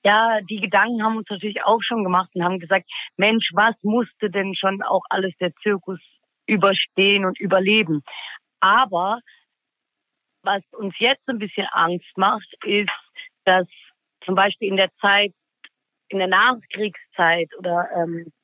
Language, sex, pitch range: German, female, 195-235 Hz